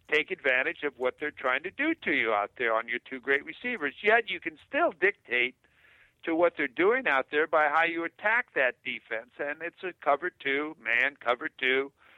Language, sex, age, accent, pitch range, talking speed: English, male, 60-79, American, 135-165 Hz, 205 wpm